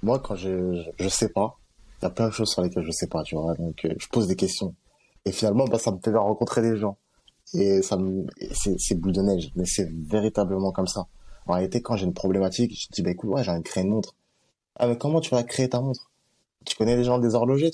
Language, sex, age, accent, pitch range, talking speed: French, male, 20-39, French, 100-140 Hz, 280 wpm